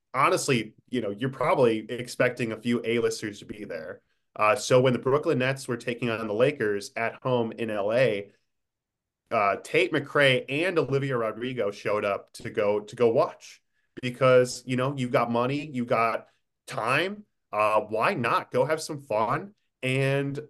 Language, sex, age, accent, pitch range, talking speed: English, male, 20-39, American, 115-155 Hz, 165 wpm